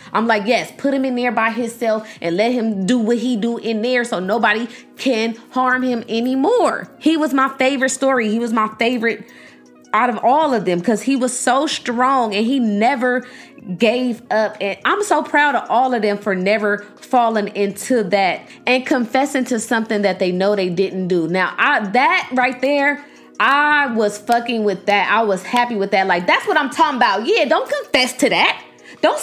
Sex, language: female, English